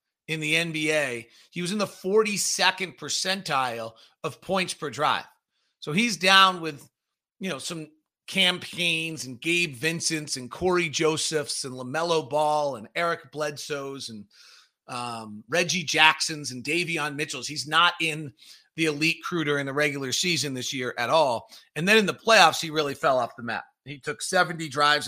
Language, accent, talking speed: English, American, 165 wpm